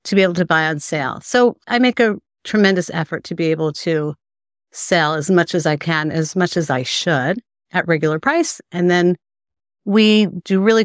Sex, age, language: female, 50-69, English